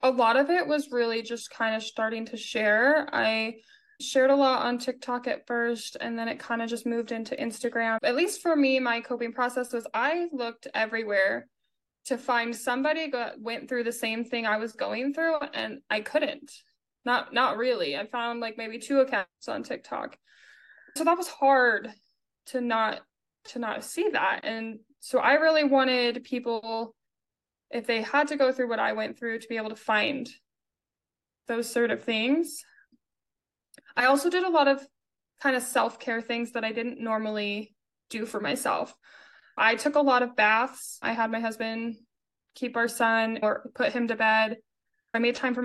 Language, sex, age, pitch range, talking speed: English, female, 20-39, 225-275 Hz, 185 wpm